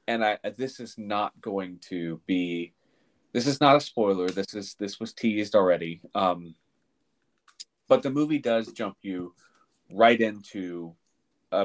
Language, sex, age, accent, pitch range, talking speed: English, male, 30-49, American, 90-115 Hz, 150 wpm